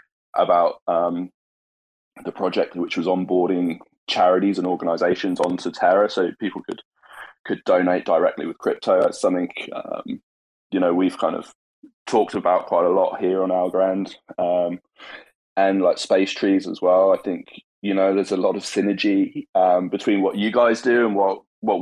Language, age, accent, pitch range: English, 20-39, British, 90-105 Hz